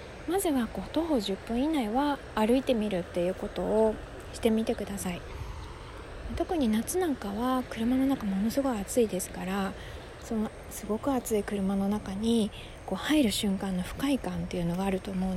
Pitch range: 200-280 Hz